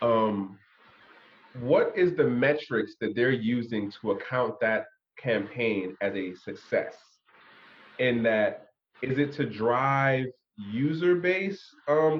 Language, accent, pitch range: English, American, 105-155 Hz